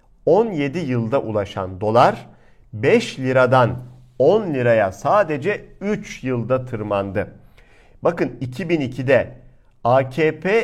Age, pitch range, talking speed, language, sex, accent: 50-69, 115-155 Hz, 85 wpm, Turkish, male, native